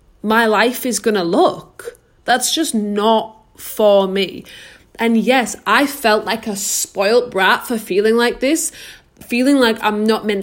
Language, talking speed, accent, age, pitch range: English, 160 wpm, British, 20-39, 205-275 Hz